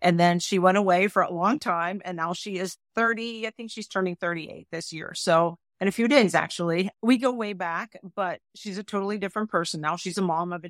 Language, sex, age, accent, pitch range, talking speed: English, female, 40-59, American, 175-220 Hz, 240 wpm